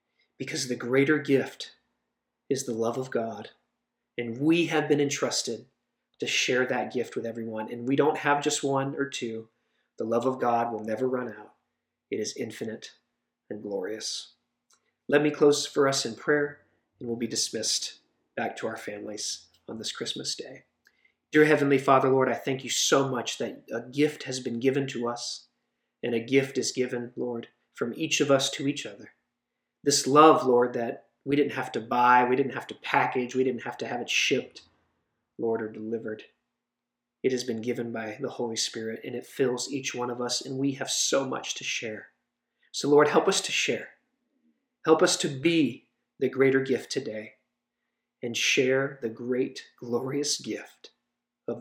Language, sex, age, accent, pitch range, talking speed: English, male, 40-59, American, 120-145 Hz, 185 wpm